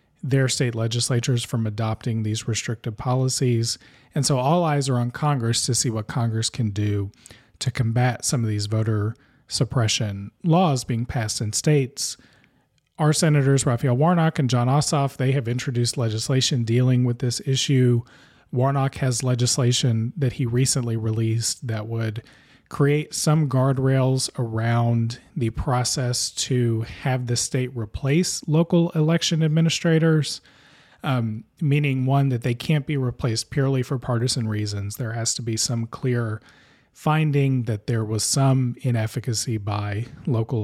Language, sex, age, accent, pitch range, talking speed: English, male, 40-59, American, 115-140 Hz, 145 wpm